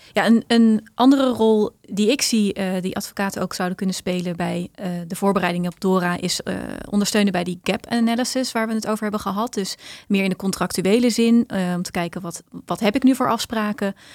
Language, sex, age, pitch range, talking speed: Dutch, female, 30-49, 175-210 Hz, 215 wpm